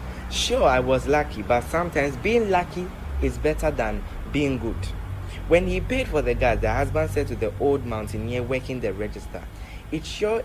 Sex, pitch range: male, 95-145 Hz